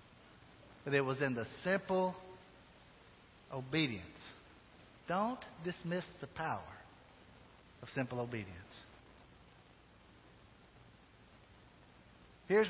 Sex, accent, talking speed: male, American, 70 wpm